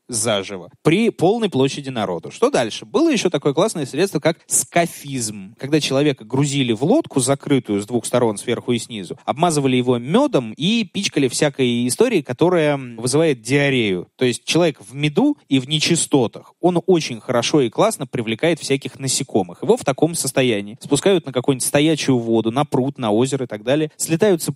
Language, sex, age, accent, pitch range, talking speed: Russian, male, 20-39, native, 125-165 Hz, 170 wpm